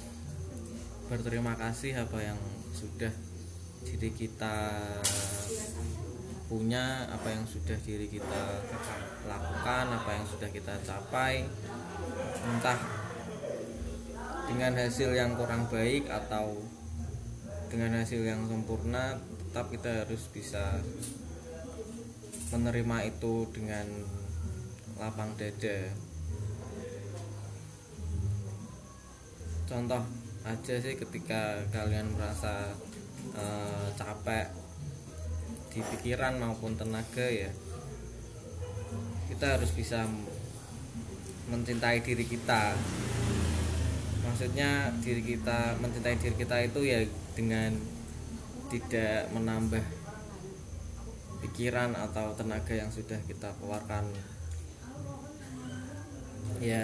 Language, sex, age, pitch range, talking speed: Indonesian, male, 20-39, 95-115 Hz, 80 wpm